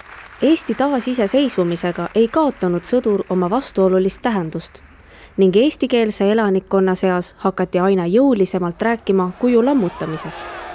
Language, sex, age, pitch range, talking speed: English, female, 20-39, 180-225 Hz, 105 wpm